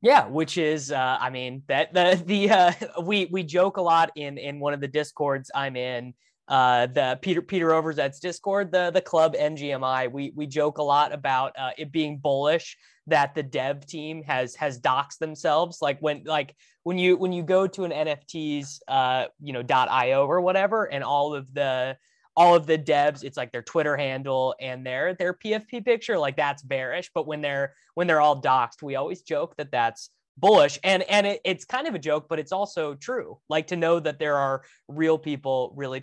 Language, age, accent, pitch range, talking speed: English, 20-39, American, 135-175 Hz, 205 wpm